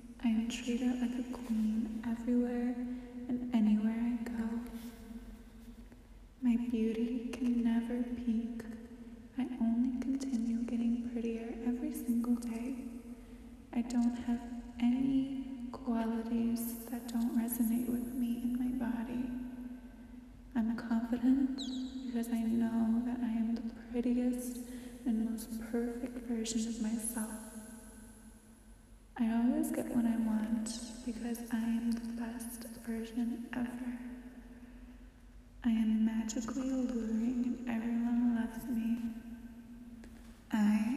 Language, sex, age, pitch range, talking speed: English, female, 20-39, 230-245 Hz, 105 wpm